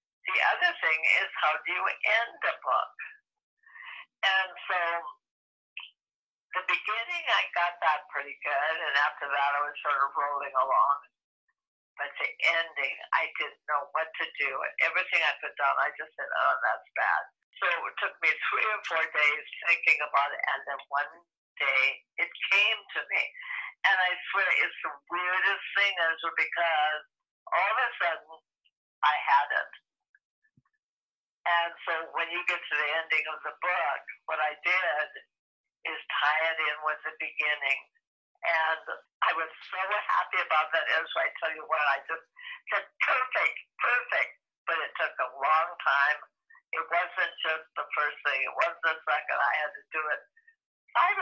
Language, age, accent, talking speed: English, 50-69, American, 170 wpm